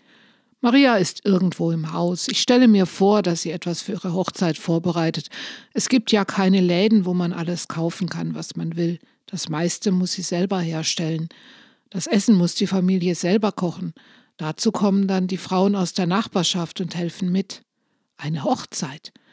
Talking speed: 170 wpm